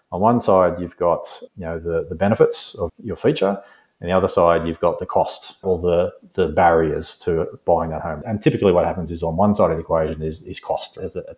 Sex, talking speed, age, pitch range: male, 235 wpm, 30-49, 80-100 Hz